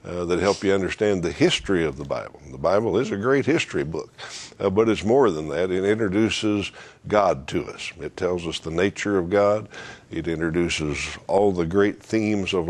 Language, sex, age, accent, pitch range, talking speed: English, male, 60-79, American, 85-100 Hz, 200 wpm